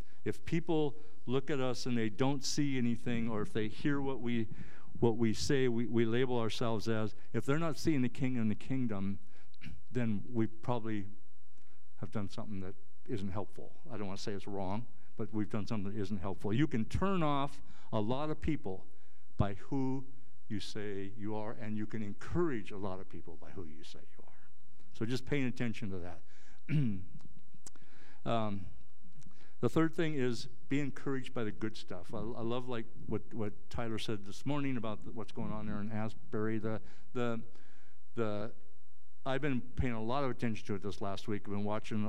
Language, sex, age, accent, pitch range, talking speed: English, male, 50-69, American, 105-125 Hz, 195 wpm